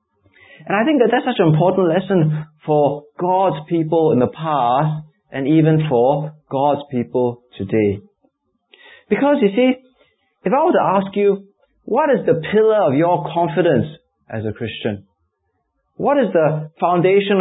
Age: 20-39